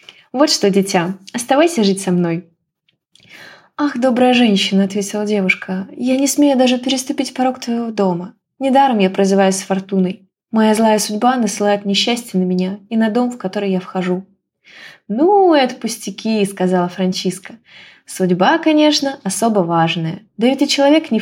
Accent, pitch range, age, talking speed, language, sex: native, 190-255 Hz, 20-39, 155 wpm, Ukrainian, female